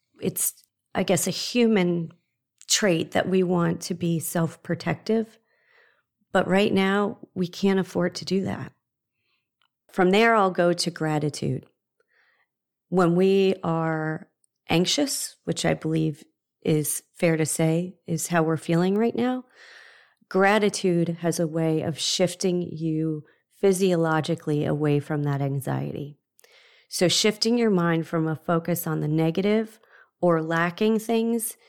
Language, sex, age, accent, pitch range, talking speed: English, female, 40-59, American, 155-190 Hz, 130 wpm